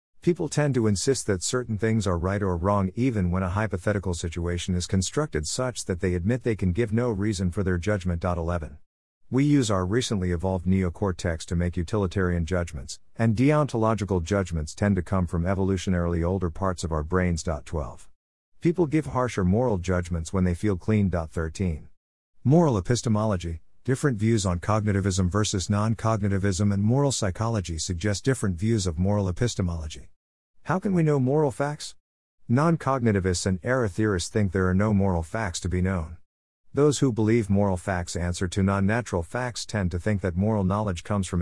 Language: English